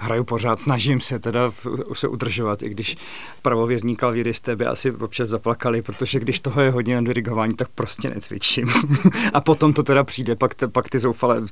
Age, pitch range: 40-59, 115-135 Hz